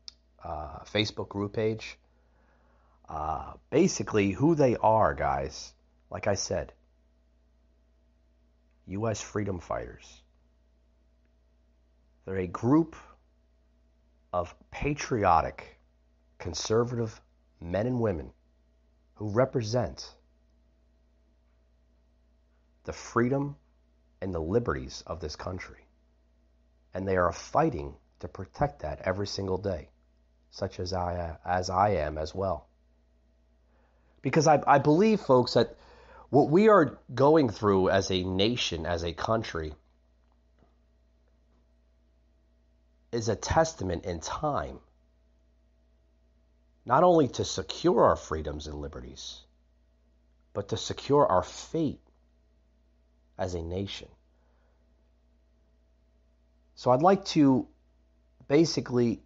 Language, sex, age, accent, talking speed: English, male, 40-59, American, 100 wpm